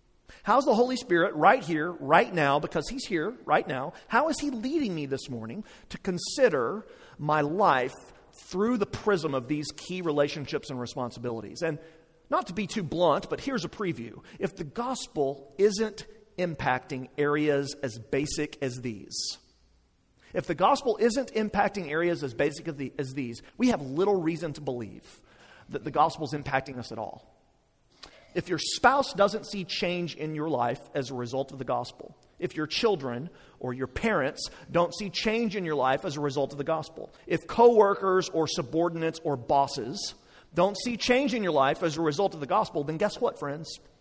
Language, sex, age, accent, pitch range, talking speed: English, male, 40-59, American, 140-195 Hz, 180 wpm